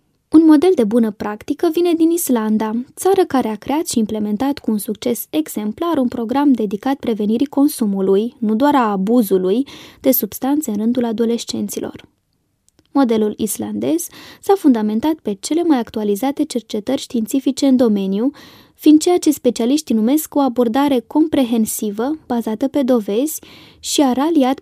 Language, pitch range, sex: Romanian, 220-295 Hz, female